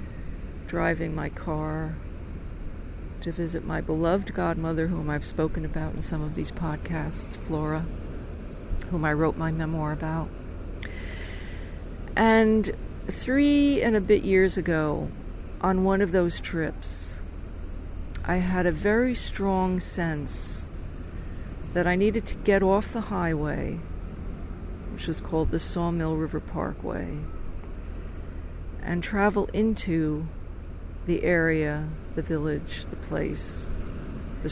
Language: English